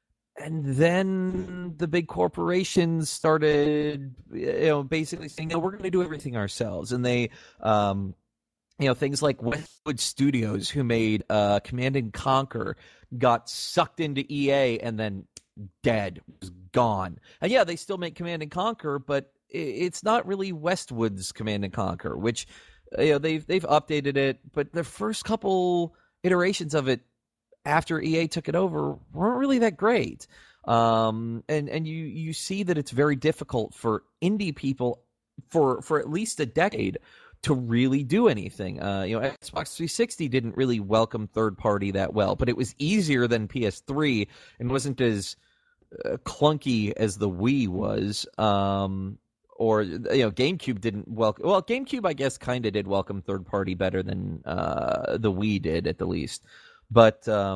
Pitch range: 110-165 Hz